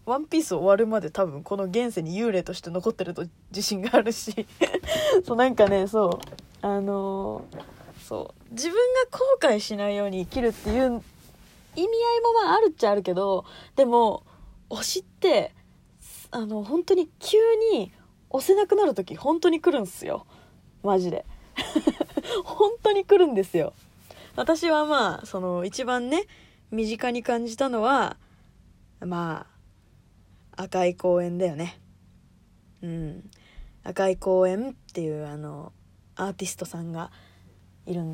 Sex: female